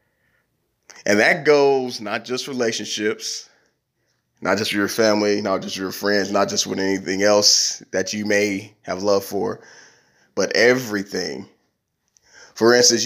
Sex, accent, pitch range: male, American, 100-120 Hz